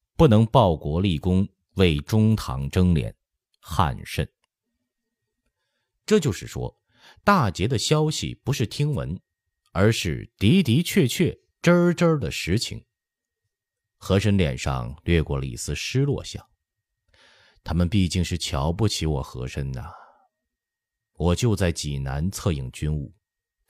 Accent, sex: native, male